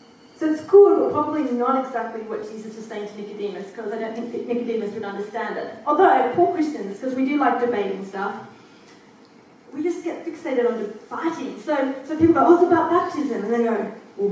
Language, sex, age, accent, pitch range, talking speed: English, female, 30-49, Australian, 230-315 Hz, 200 wpm